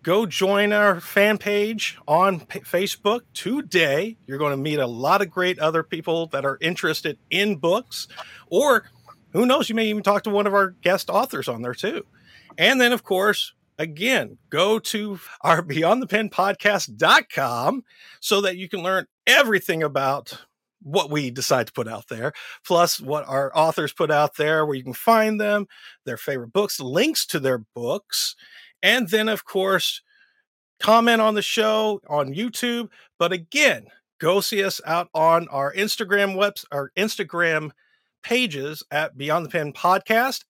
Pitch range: 155-215 Hz